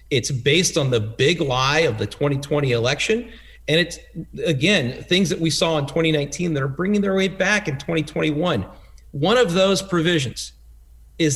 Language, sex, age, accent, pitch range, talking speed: English, male, 40-59, American, 120-165 Hz, 170 wpm